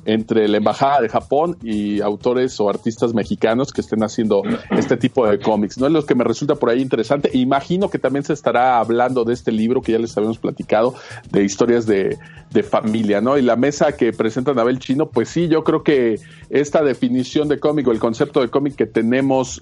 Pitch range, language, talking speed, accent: 110-140 Hz, Spanish, 210 wpm, Mexican